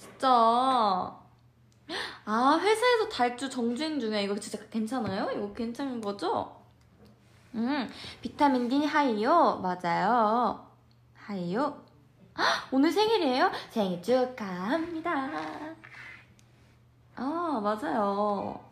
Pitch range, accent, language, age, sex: 205-285 Hz, native, Korean, 20-39, female